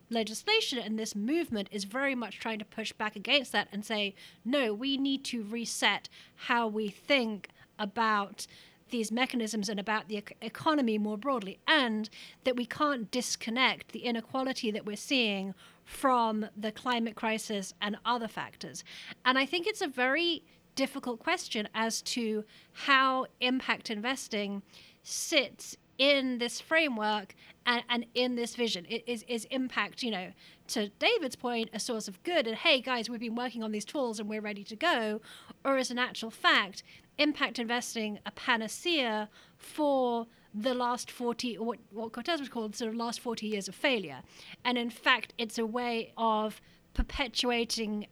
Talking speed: 165 wpm